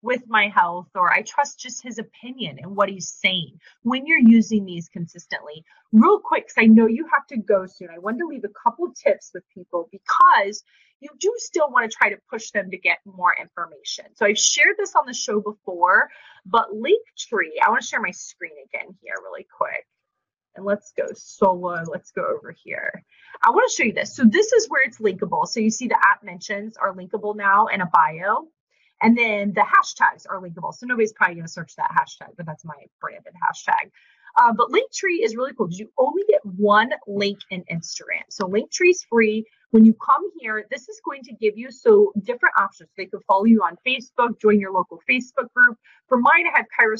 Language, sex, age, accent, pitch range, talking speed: English, female, 30-49, American, 200-310 Hz, 215 wpm